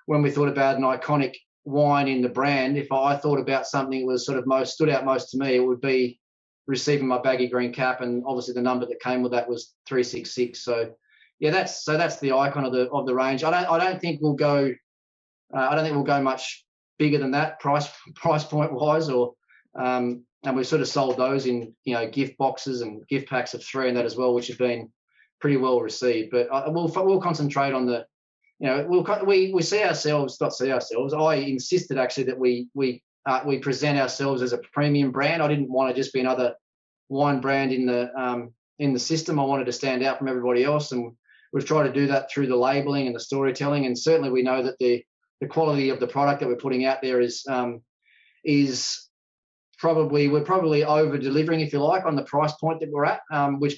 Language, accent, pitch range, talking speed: English, Australian, 125-145 Hz, 230 wpm